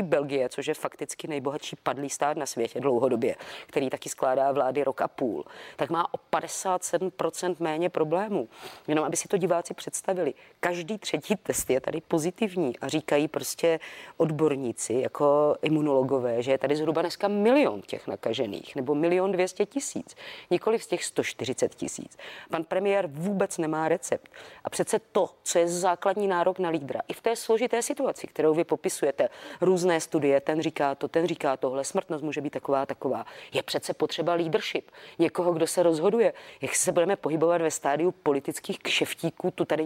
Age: 30-49